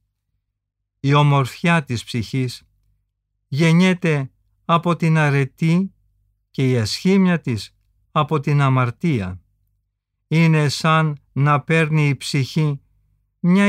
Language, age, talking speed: Greek, 50-69, 95 wpm